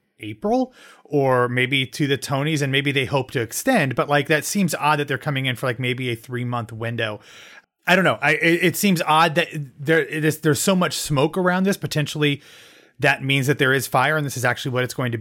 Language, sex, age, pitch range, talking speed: English, male, 30-49, 120-155 Hz, 235 wpm